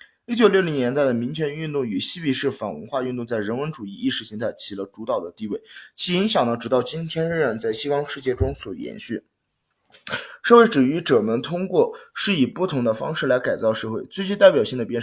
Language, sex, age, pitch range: Chinese, male, 20-39, 125-200 Hz